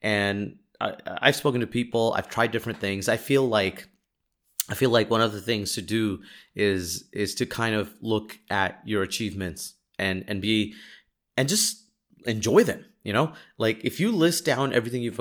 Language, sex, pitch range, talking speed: English, male, 100-130 Hz, 185 wpm